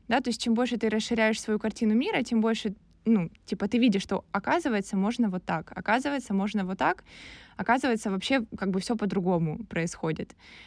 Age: 20-39